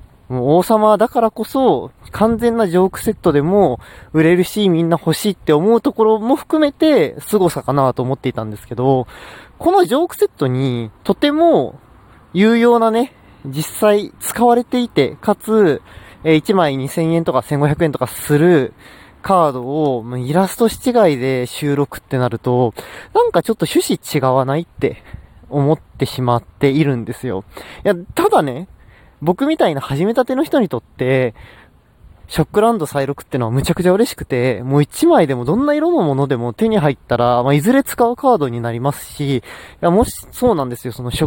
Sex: male